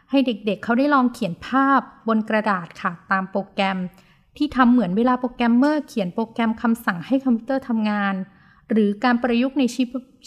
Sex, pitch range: female, 225-285 Hz